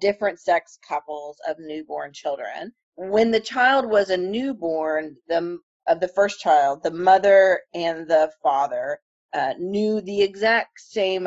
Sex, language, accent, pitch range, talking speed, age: female, English, American, 160-215 Hz, 145 wpm, 30-49